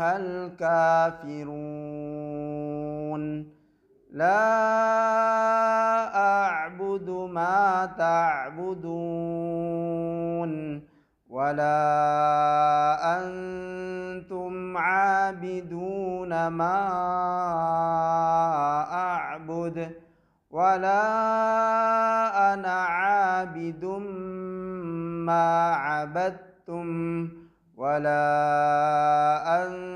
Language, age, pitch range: Indonesian, 40-59, 150-185 Hz